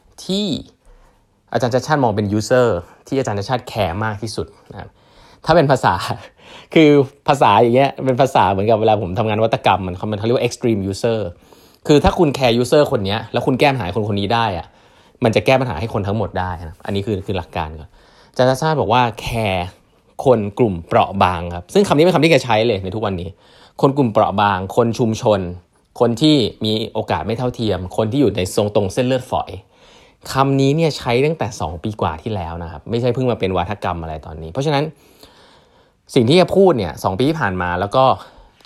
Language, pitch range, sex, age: Thai, 100-130 Hz, male, 20-39